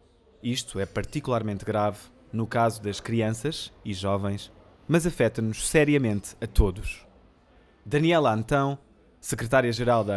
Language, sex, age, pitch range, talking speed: Portuguese, male, 20-39, 105-135 Hz, 110 wpm